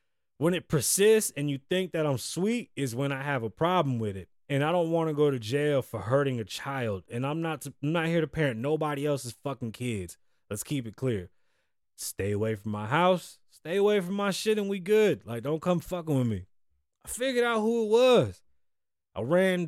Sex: male